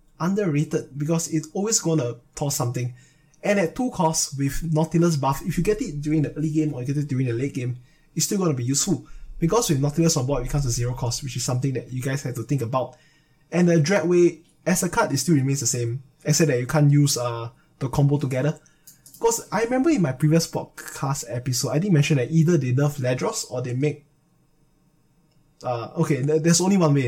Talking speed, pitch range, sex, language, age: 220 wpm, 135-155 Hz, male, English, 20-39